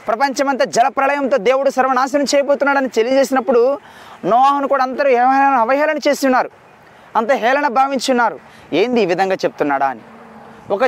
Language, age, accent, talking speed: Telugu, 20-39, native, 110 wpm